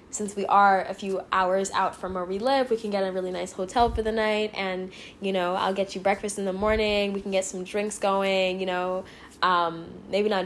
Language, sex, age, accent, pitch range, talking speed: English, female, 10-29, American, 190-220 Hz, 240 wpm